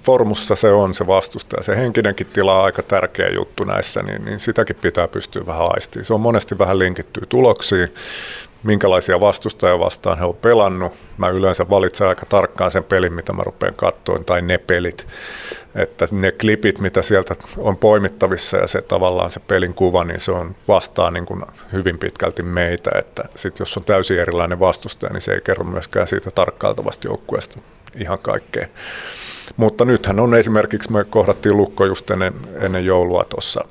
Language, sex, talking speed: Finnish, male, 170 wpm